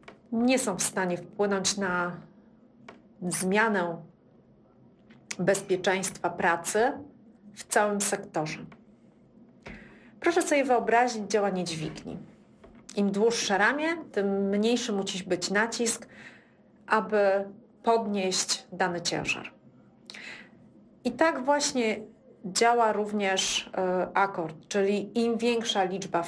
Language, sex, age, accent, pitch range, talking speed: Polish, female, 40-59, native, 190-230 Hz, 90 wpm